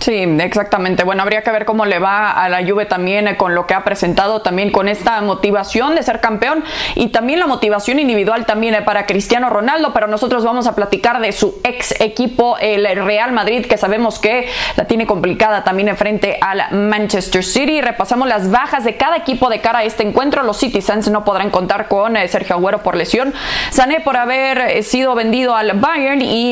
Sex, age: female, 20-39